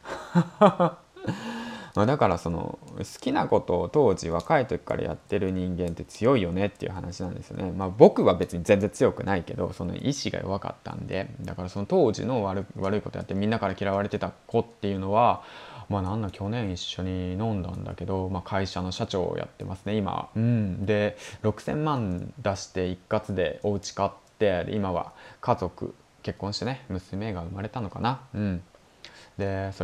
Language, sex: Japanese, male